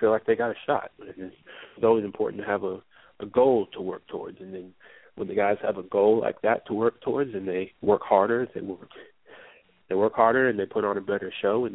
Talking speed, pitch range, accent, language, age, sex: 240 wpm, 95-115 Hz, American, English, 30-49, male